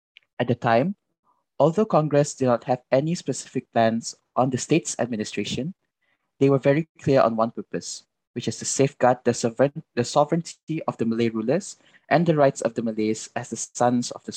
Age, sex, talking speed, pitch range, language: 20-39, male, 185 wpm, 115-150 Hz, English